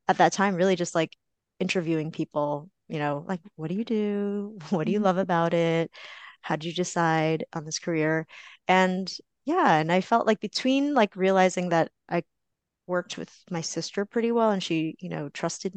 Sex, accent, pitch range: female, American, 155-185 Hz